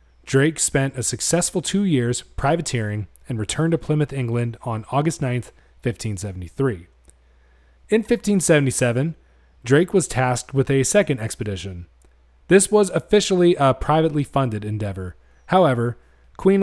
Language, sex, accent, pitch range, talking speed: English, male, American, 105-145 Hz, 125 wpm